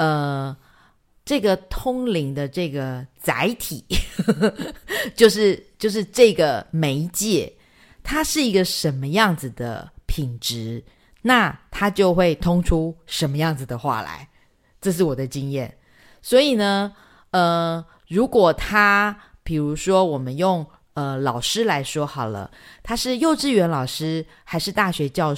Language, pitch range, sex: Chinese, 145-215 Hz, female